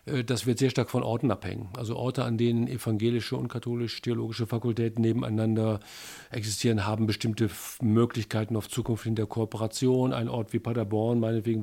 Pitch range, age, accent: 115-125 Hz, 50-69, German